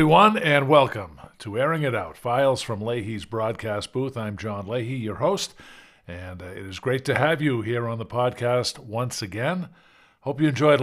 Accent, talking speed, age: American, 190 wpm, 50-69